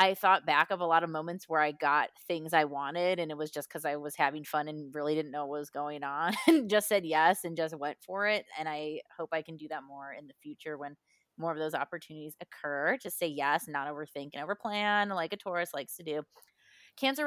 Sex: female